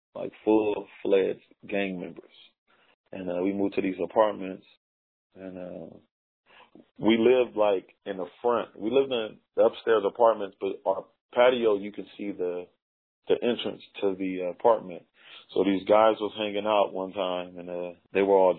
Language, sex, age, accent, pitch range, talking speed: English, male, 20-39, American, 95-115 Hz, 160 wpm